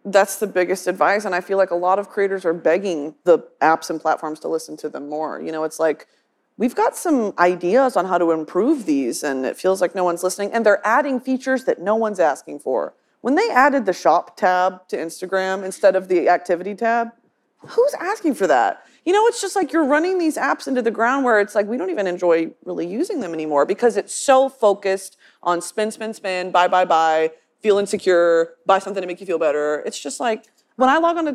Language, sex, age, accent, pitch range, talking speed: English, female, 30-49, American, 175-245 Hz, 230 wpm